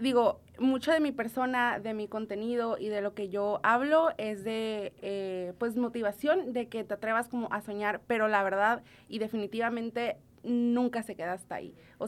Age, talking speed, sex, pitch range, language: 20-39, 185 wpm, female, 200-235 Hz, Spanish